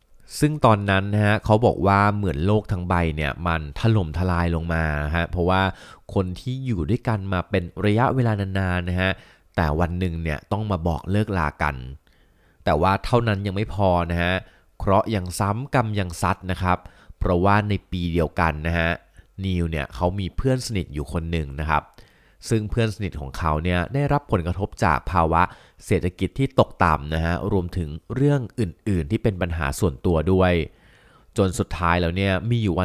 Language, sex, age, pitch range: Thai, male, 30-49, 85-105 Hz